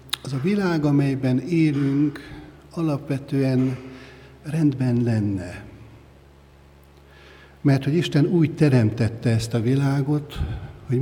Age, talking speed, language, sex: 60-79, 95 wpm, Hungarian, male